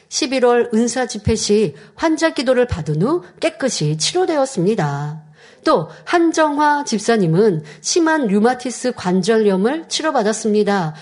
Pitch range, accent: 180-255 Hz, native